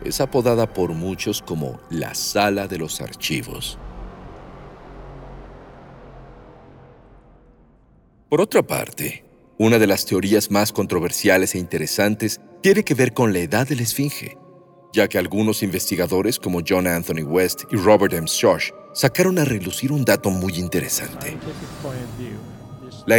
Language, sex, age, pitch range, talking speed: Spanish, male, 50-69, 95-130 Hz, 125 wpm